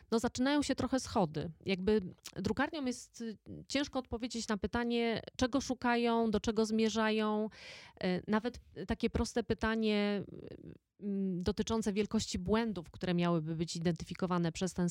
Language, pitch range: Polish, 180-225 Hz